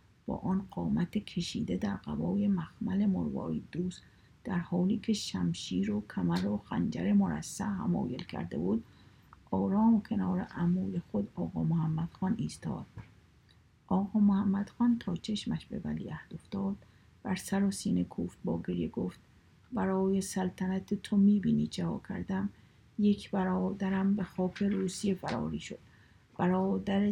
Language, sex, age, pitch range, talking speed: Persian, female, 50-69, 170-205 Hz, 130 wpm